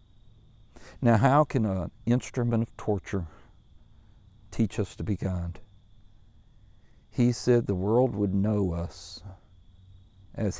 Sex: male